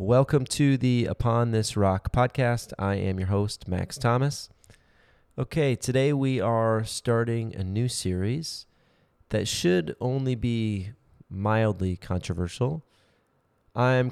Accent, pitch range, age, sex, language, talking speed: American, 100-125 Hz, 30-49, male, English, 120 wpm